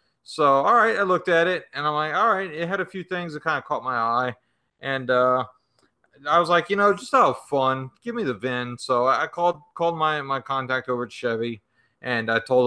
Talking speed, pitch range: 235 wpm, 125-150 Hz